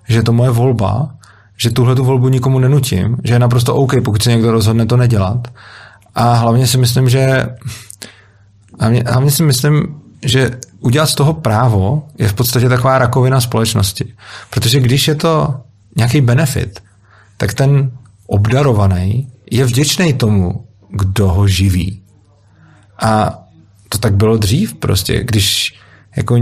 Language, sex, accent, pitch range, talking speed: Czech, male, native, 105-125 Hz, 145 wpm